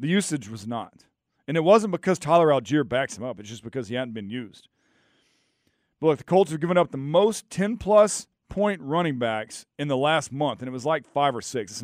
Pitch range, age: 130-175 Hz, 40-59